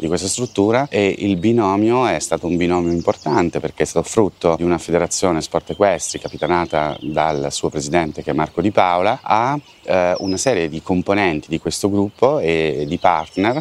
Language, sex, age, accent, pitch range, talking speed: Italian, male, 30-49, native, 80-95 Hz, 180 wpm